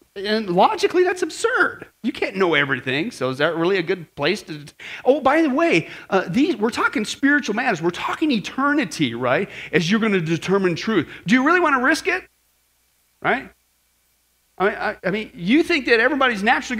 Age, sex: 40-59, male